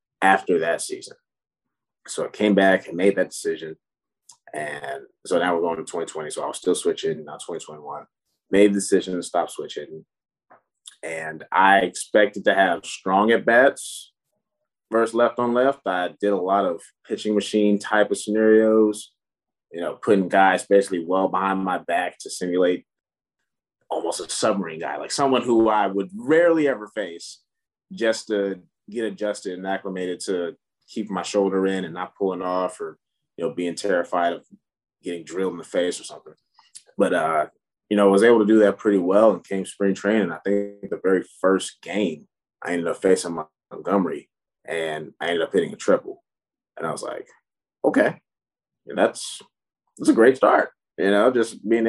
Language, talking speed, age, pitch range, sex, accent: English, 175 wpm, 30-49, 95-115 Hz, male, American